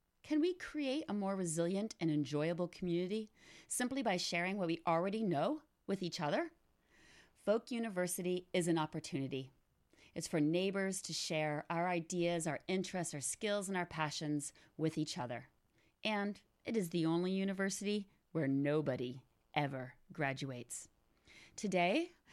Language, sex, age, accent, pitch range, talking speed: English, female, 40-59, American, 160-205 Hz, 140 wpm